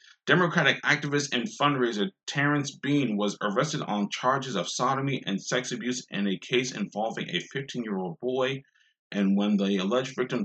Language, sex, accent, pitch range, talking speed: English, male, American, 105-155 Hz, 155 wpm